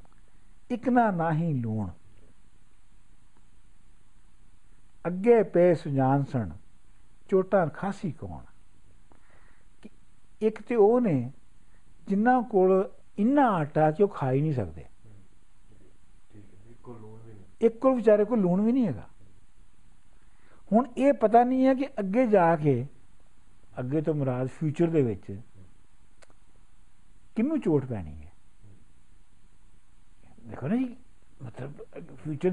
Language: Punjabi